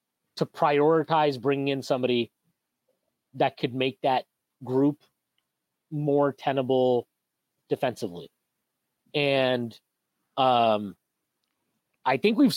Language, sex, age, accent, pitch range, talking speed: English, male, 30-49, American, 125-160 Hz, 85 wpm